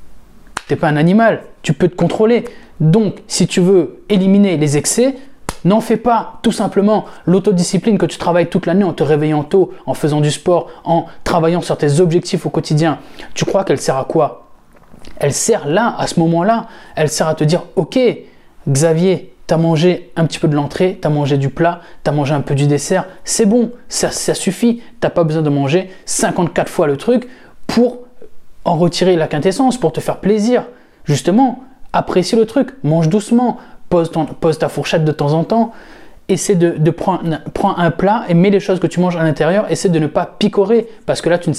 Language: French